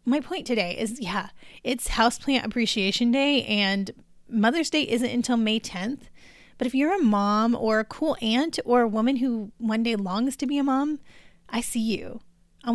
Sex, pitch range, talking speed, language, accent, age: female, 205-255 Hz, 190 wpm, English, American, 20-39